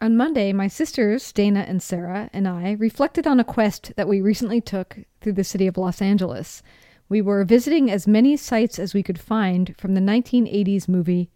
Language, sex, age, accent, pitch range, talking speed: English, female, 40-59, American, 195-235 Hz, 195 wpm